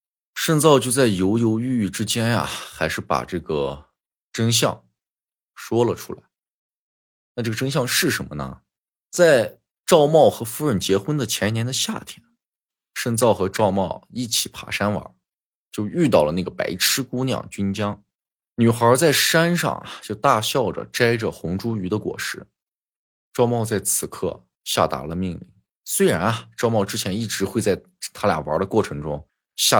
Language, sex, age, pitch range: Chinese, male, 20-39, 95-120 Hz